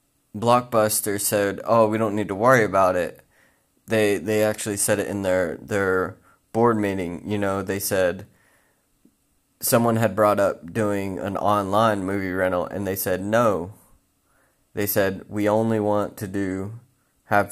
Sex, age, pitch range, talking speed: male, 20-39, 95-110 Hz, 155 wpm